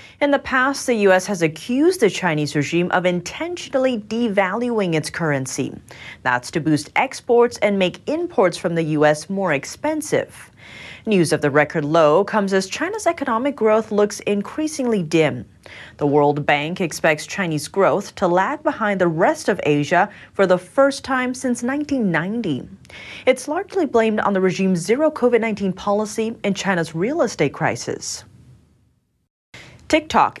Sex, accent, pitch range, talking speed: female, American, 170-255 Hz, 145 wpm